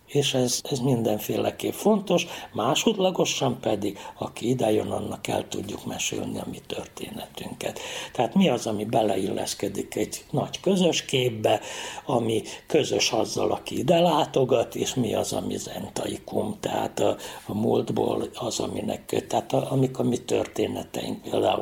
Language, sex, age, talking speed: Hungarian, male, 60-79, 140 wpm